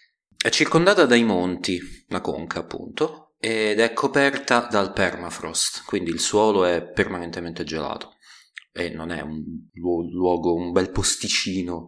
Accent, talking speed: native, 130 wpm